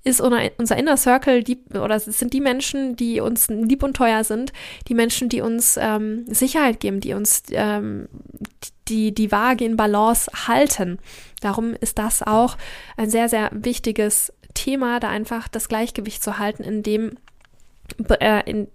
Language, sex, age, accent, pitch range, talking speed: German, female, 10-29, German, 210-245 Hz, 155 wpm